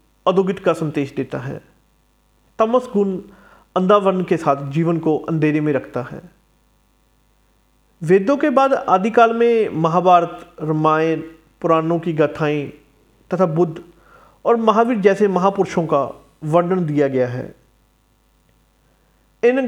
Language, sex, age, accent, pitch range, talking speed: Hindi, male, 40-59, native, 155-200 Hz, 115 wpm